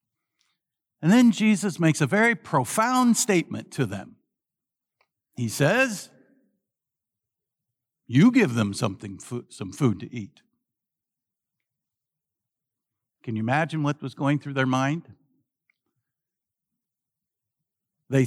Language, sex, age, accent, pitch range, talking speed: English, male, 60-79, American, 130-215 Hz, 100 wpm